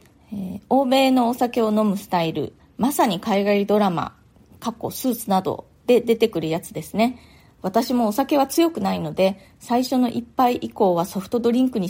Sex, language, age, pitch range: female, Japanese, 20-39, 185-250 Hz